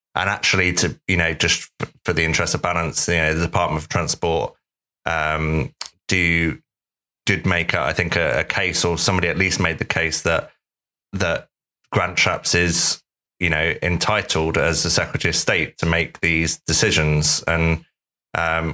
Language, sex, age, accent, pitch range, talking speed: English, male, 20-39, British, 80-85 Hz, 165 wpm